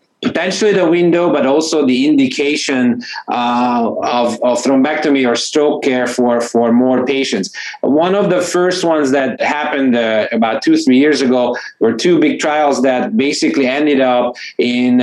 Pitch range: 125-150 Hz